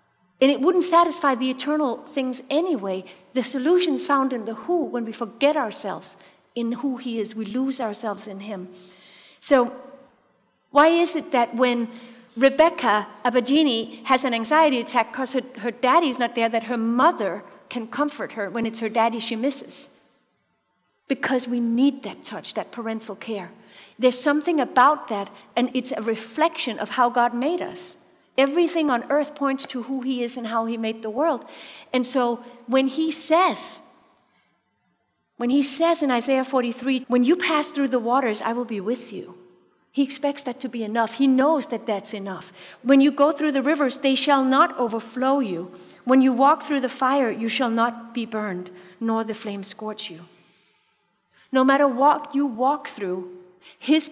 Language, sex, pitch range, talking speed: English, female, 225-280 Hz, 175 wpm